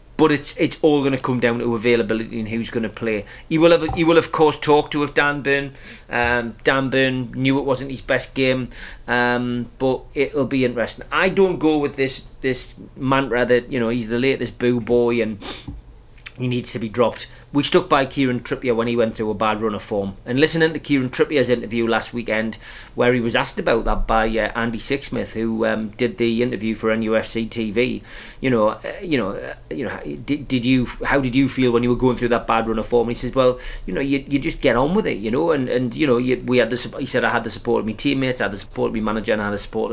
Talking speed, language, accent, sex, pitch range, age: 255 wpm, English, British, male, 115-140 Hz, 30-49